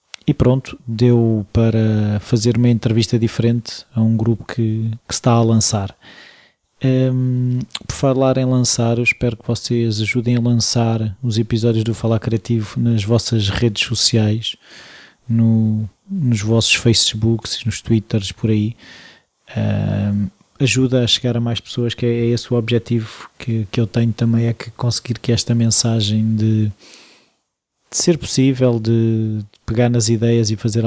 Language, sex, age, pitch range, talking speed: Portuguese, male, 20-39, 110-125 Hz, 150 wpm